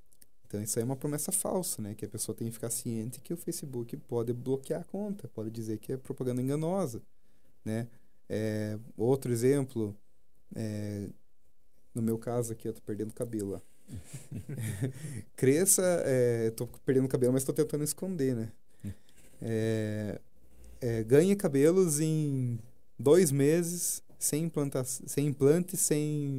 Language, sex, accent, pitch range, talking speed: Portuguese, male, Brazilian, 115-145 Hz, 145 wpm